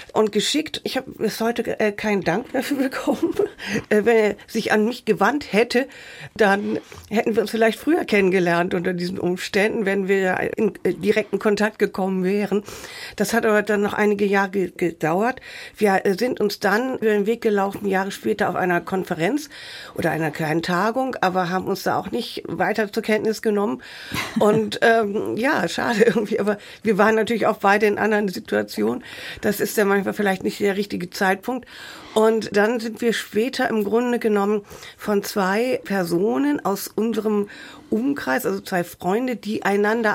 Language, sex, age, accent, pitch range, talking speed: German, female, 50-69, German, 195-230 Hz, 165 wpm